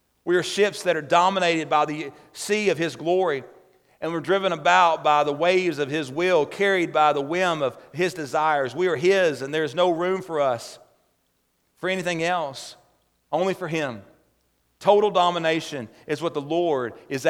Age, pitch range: 40-59, 140-170 Hz